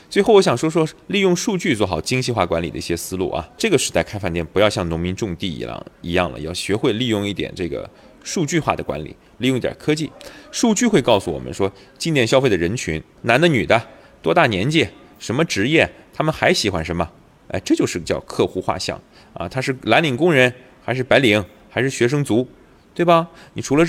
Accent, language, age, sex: native, Chinese, 30-49, male